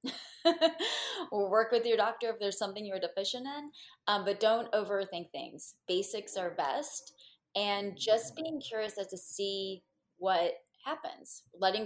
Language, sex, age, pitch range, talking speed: English, female, 20-39, 175-220 Hz, 145 wpm